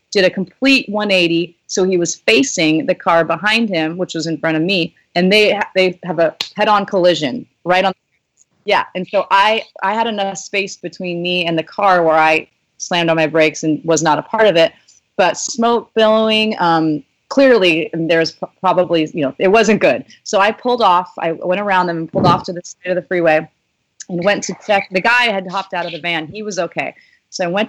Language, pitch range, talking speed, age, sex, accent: English, 170-205 Hz, 220 wpm, 30-49, female, American